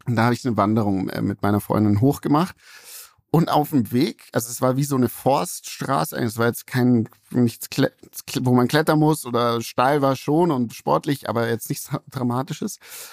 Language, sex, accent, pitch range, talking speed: German, male, German, 115-140 Hz, 185 wpm